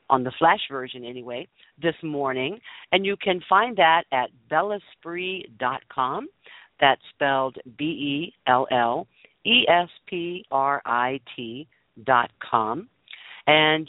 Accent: American